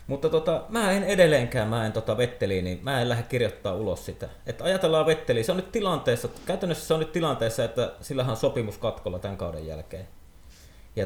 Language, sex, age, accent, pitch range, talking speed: Finnish, male, 30-49, native, 95-135 Hz, 200 wpm